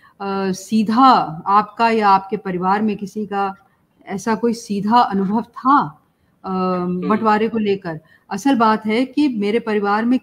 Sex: female